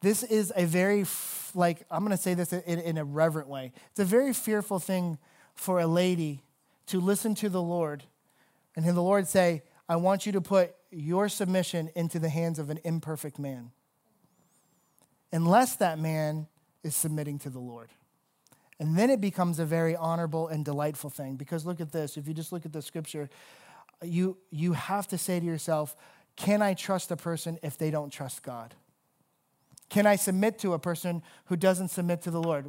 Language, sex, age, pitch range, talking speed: English, male, 30-49, 165-215 Hz, 195 wpm